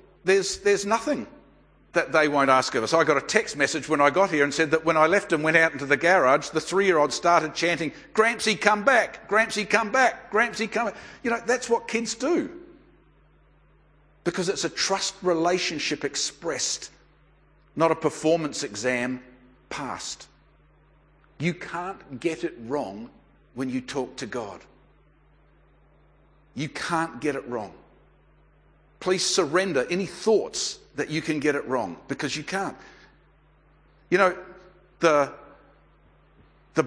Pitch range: 145-185 Hz